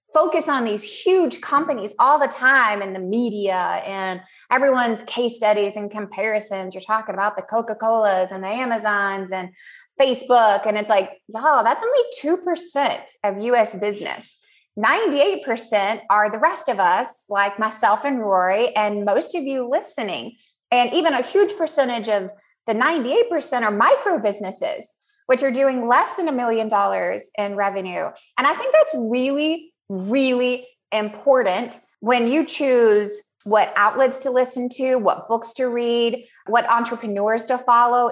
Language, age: English, 20-39